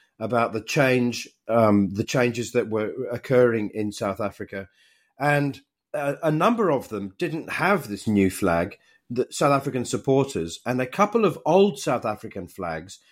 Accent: British